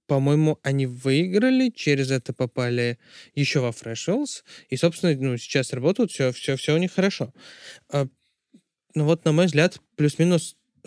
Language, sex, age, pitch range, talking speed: Russian, male, 20-39, 130-170 Hz, 145 wpm